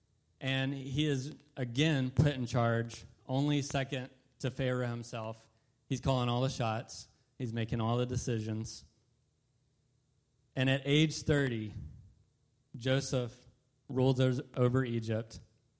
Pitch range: 115-135 Hz